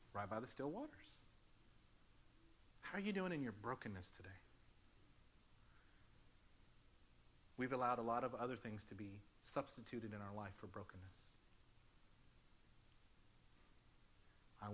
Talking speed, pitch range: 120 wpm, 105-125 Hz